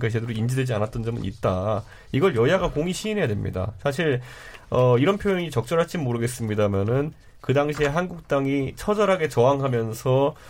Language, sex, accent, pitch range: Korean, male, native, 120-165 Hz